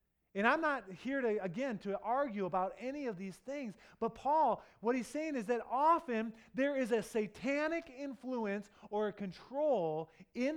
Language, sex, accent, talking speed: English, male, American, 170 wpm